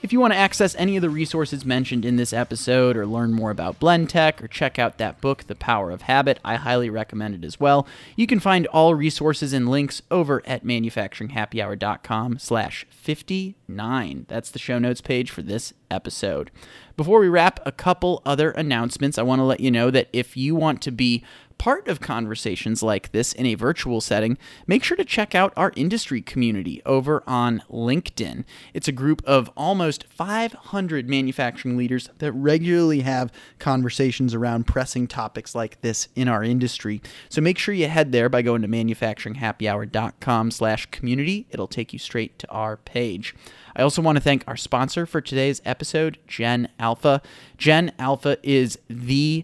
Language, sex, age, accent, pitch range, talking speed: English, male, 30-49, American, 115-155 Hz, 180 wpm